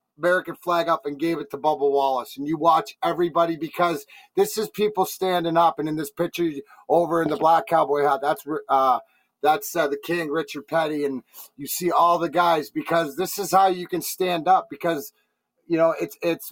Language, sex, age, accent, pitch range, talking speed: English, male, 30-49, American, 160-190 Hz, 205 wpm